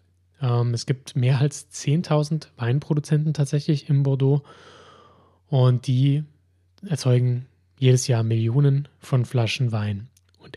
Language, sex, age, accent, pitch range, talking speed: German, male, 20-39, German, 115-140 Hz, 110 wpm